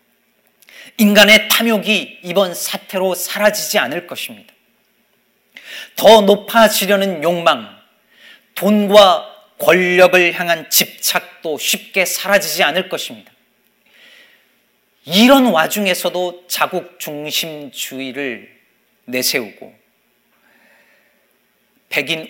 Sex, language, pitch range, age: male, Korean, 155-220 Hz, 40-59